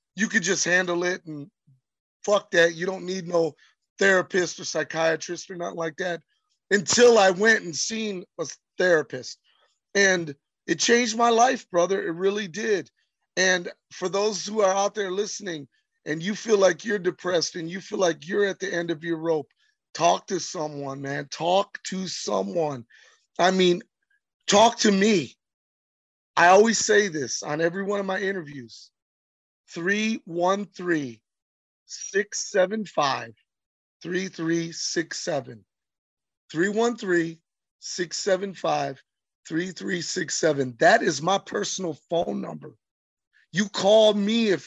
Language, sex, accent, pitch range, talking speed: English, male, American, 160-200 Hz, 125 wpm